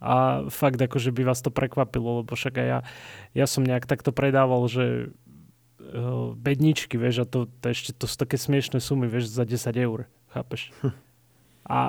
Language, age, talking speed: Slovak, 20-39, 170 wpm